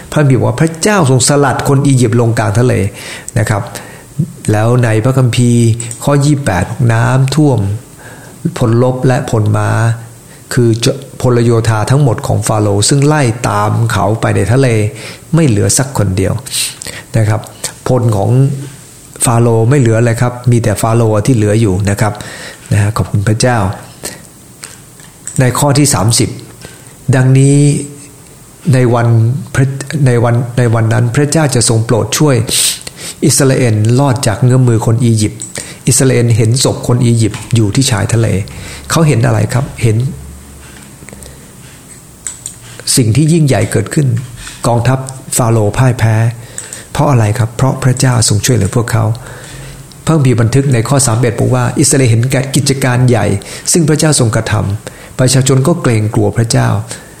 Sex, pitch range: male, 115-135 Hz